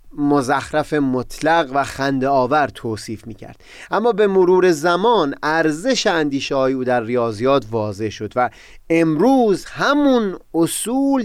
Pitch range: 125-185 Hz